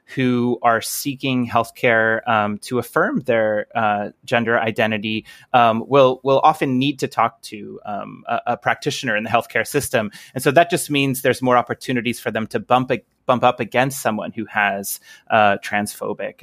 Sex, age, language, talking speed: male, 30-49, English, 175 wpm